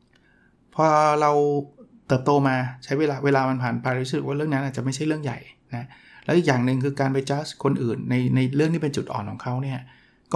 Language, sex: Thai, male